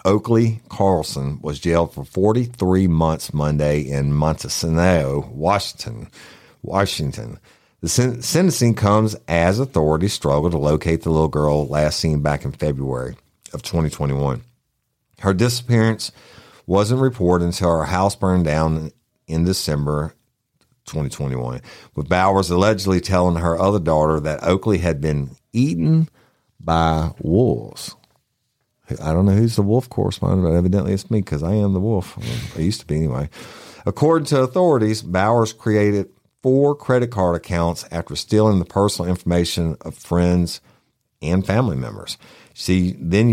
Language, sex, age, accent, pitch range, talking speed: English, male, 50-69, American, 80-110 Hz, 135 wpm